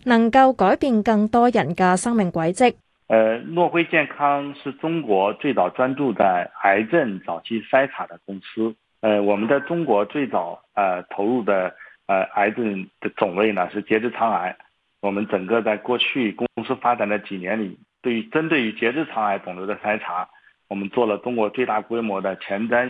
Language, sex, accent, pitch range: Chinese, male, native, 105-135 Hz